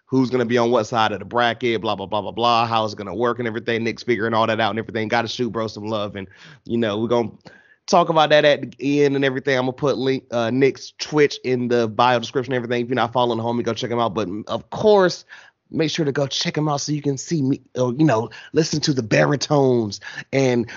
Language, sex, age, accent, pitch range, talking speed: English, male, 30-49, American, 115-135 Hz, 270 wpm